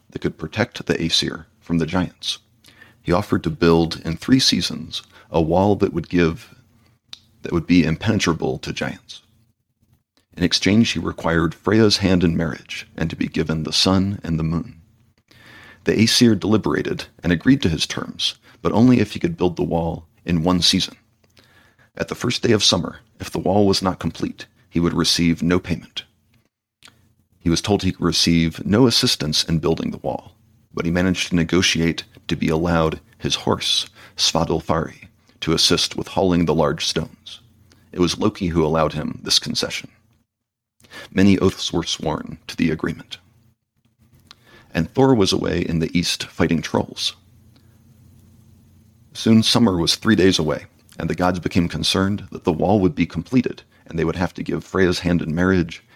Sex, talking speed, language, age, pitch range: male, 170 wpm, English, 40-59, 85-110 Hz